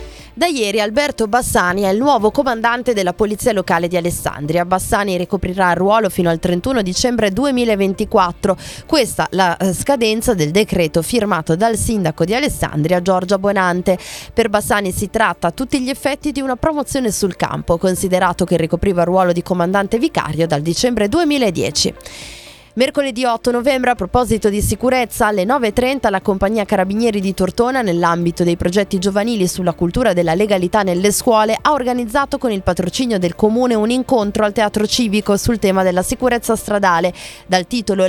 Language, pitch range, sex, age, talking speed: Italian, 180-240 Hz, female, 20-39, 160 wpm